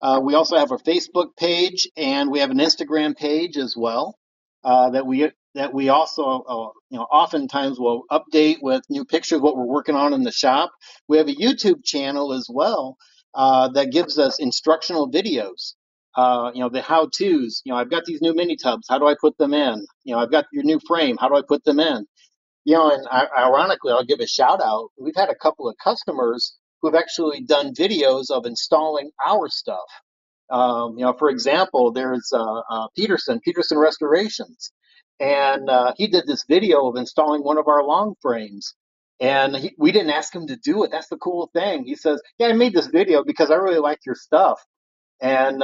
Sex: male